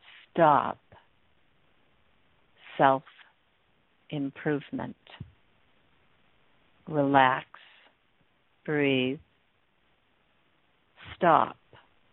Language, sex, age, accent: English, female, 60-79, American